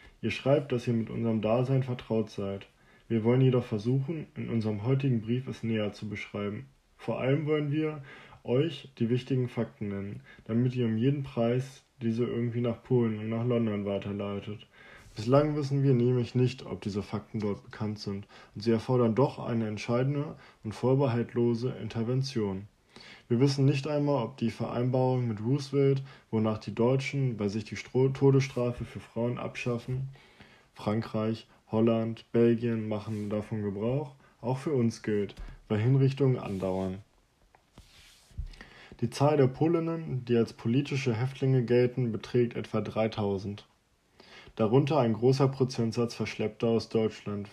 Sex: male